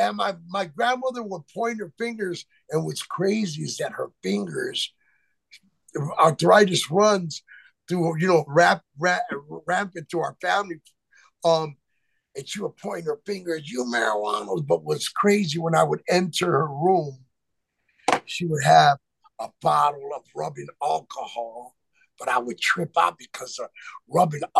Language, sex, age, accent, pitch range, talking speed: English, male, 50-69, American, 160-230 Hz, 140 wpm